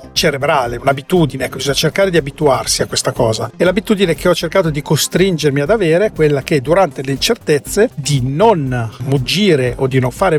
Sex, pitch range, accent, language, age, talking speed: male, 130-175 Hz, native, Italian, 50-69, 185 wpm